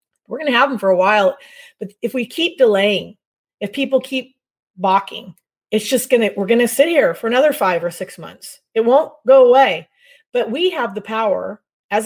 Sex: female